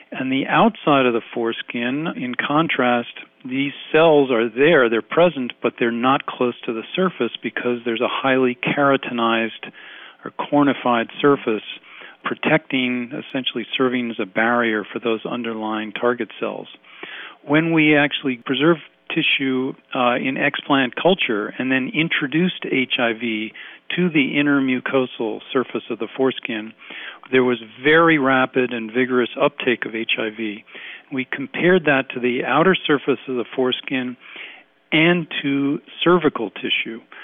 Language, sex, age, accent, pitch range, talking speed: English, male, 50-69, American, 120-145 Hz, 135 wpm